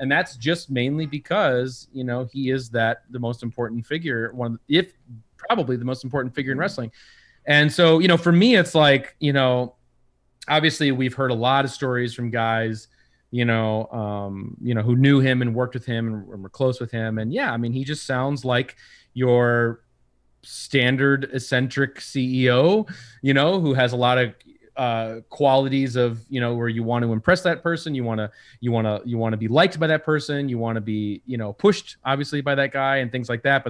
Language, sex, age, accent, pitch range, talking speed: English, male, 30-49, American, 115-140 Hz, 215 wpm